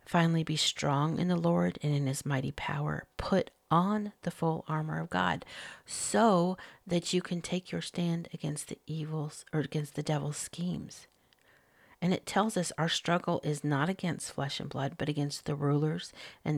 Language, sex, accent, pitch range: English, female, American, 145-190 Hz